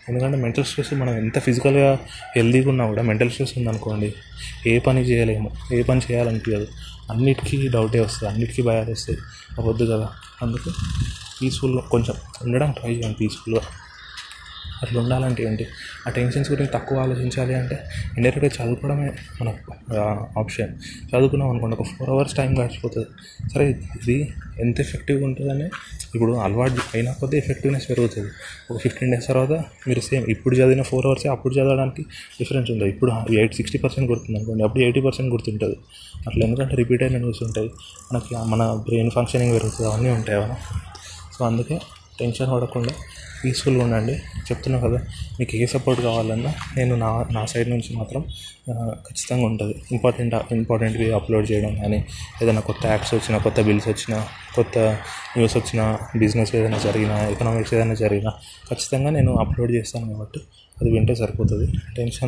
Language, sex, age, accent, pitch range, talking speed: Telugu, male, 20-39, native, 110-125 Hz, 140 wpm